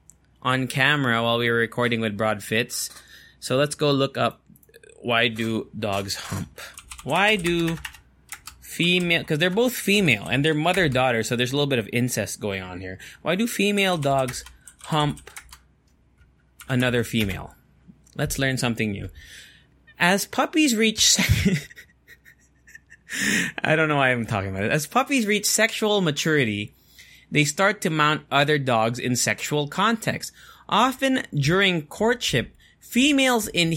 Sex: male